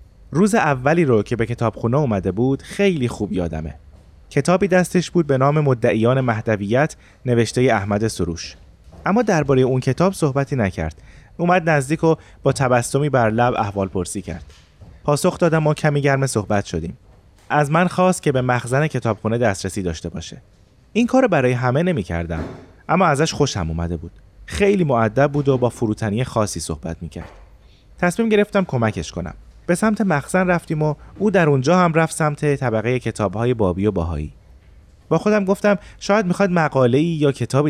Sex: male